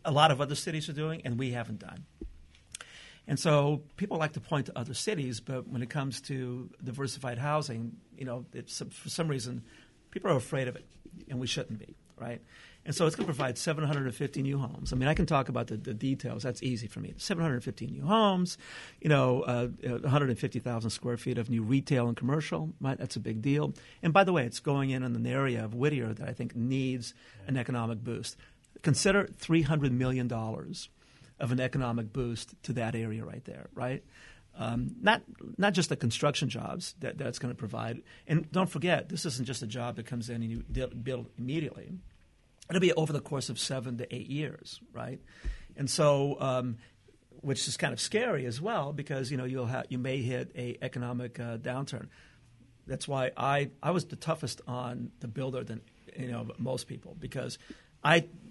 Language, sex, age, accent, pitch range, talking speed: English, male, 50-69, American, 120-150 Hz, 200 wpm